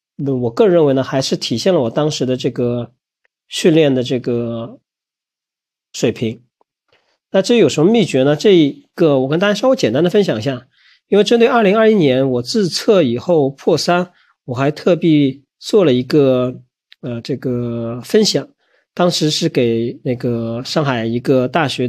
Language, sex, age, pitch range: Chinese, male, 40-59, 125-165 Hz